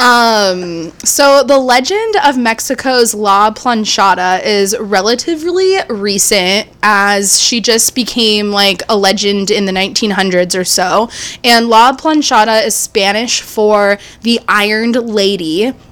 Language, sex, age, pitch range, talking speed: English, female, 20-39, 190-230 Hz, 120 wpm